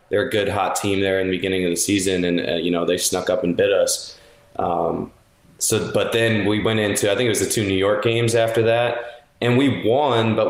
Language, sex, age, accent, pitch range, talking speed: English, male, 20-39, American, 95-115 Hz, 250 wpm